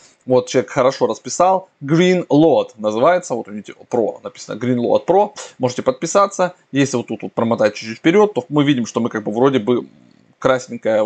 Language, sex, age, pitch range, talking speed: Russian, male, 20-39, 120-150 Hz, 185 wpm